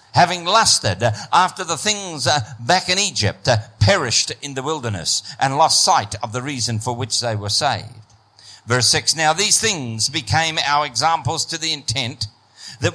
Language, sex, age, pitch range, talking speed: English, male, 50-69, 105-135 Hz, 160 wpm